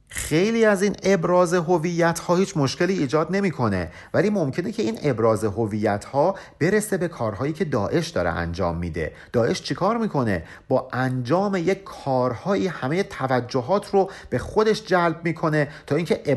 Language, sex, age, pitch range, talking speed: Persian, male, 50-69, 115-180 Hz, 160 wpm